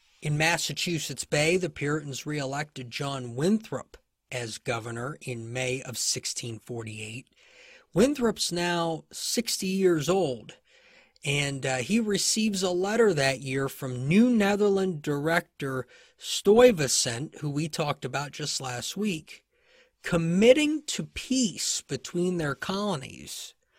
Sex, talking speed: male, 115 wpm